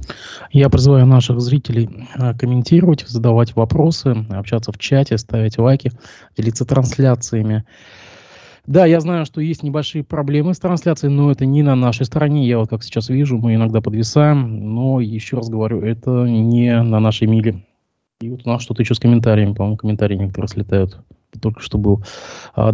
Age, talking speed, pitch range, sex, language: 20-39, 160 wpm, 105-125 Hz, male, Russian